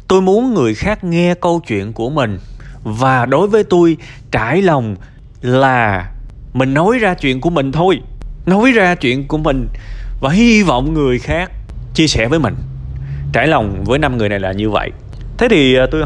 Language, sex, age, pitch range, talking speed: Vietnamese, male, 20-39, 120-190 Hz, 185 wpm